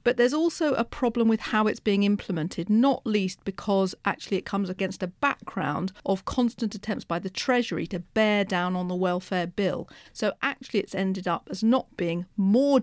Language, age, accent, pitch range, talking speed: English, 40-59, British, 185-225 Hz, 190 wpm